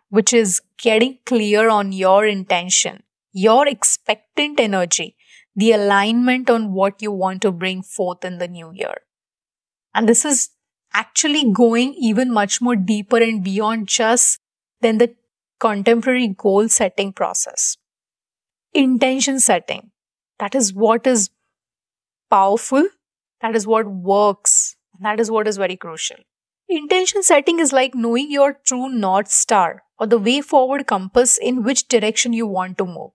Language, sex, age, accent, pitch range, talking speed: English, female, 30-49, Indian, 205-250 Hz, 145 wpm